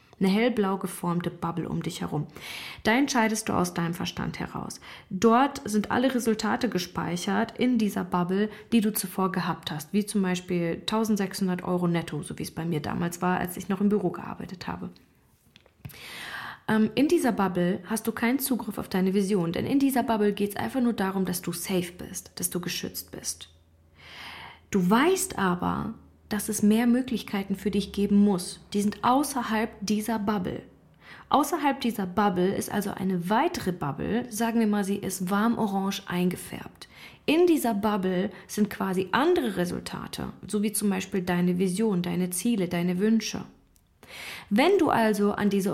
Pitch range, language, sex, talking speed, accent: 185-225 Hz, German, female, 170 wpm, German